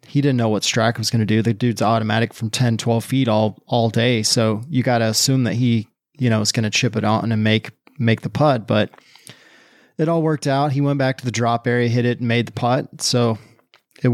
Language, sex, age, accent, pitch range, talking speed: English, male, 30-49, American, 115-130 Hz, 250 wpm